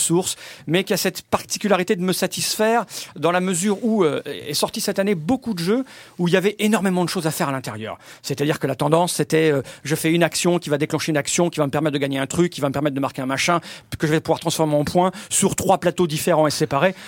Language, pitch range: French, 150-185 Hz